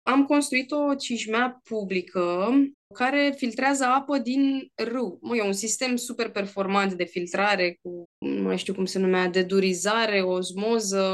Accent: native